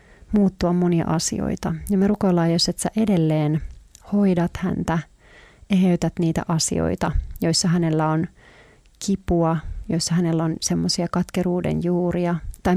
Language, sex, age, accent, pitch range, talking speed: Finnish, female, 30-49, native, 165-190 Hz, 120 wpm